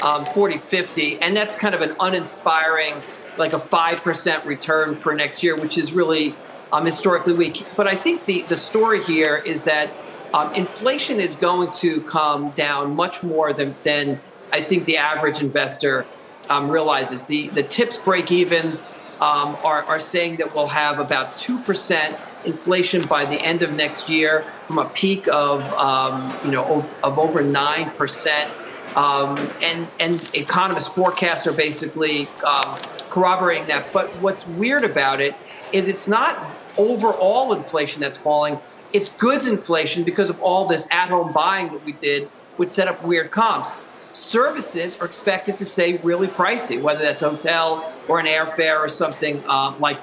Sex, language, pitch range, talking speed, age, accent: male, English, 150-190 Hz, 170 wpm, 40-59, American